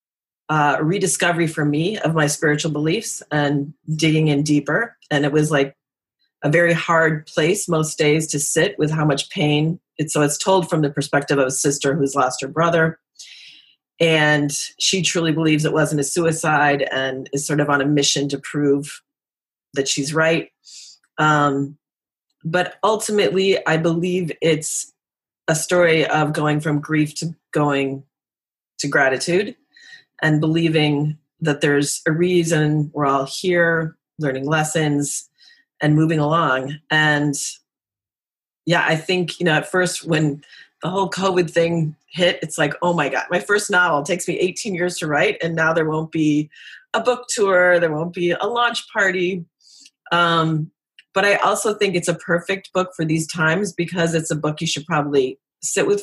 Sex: female